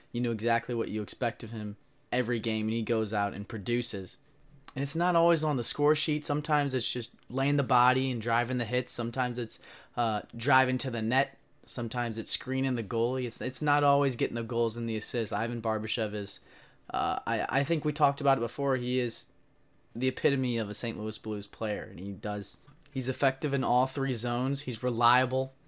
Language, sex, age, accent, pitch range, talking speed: English, male, 20-39, American, 110-135 Hz, 210 wpm